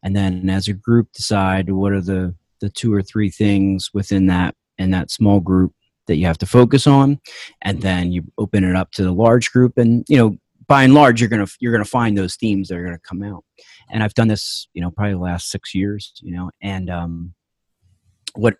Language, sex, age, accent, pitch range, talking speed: English, male, 30-49, American, 95-105 Hz, 225 wpm